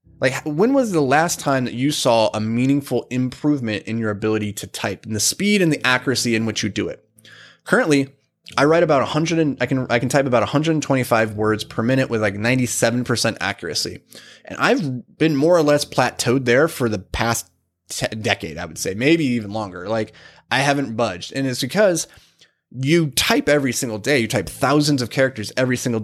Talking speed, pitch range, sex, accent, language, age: 200 wpm, 110-140 Hz, male, American, English, 20-39